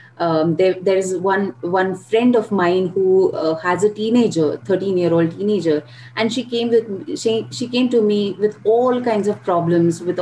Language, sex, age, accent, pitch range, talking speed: English, female, 30-49, Indian, 170-215 Hz, 190 wpm